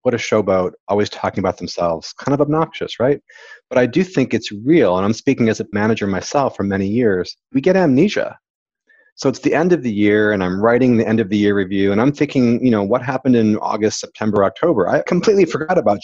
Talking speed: 230 wpm